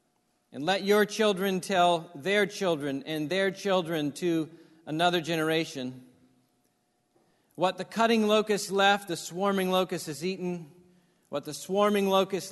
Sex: male